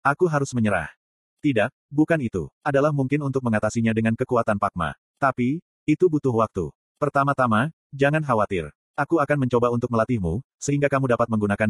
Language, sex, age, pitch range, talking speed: Indonesian, male, 30-49, 110-140 Hz, 150 wpm